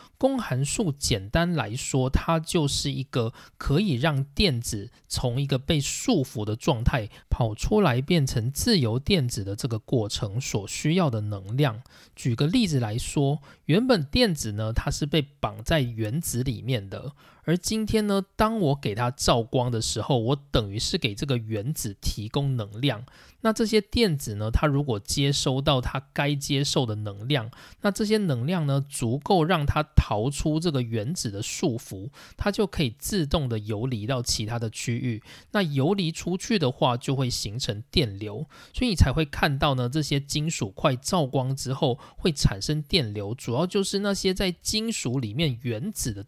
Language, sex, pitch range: Chinese, male, 120-165 Hz